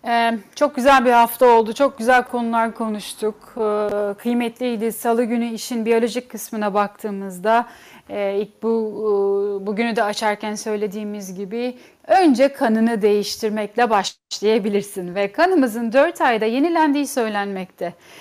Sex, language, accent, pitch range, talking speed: female, Turkish, native, 215-255 Hz, 120 wpm